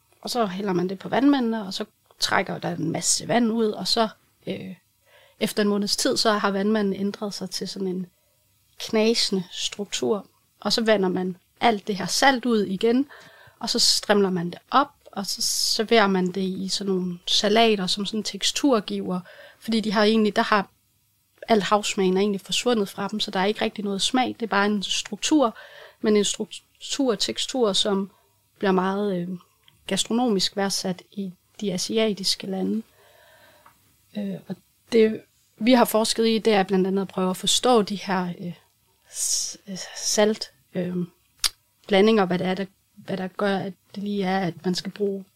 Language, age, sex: Danish, 30-49, female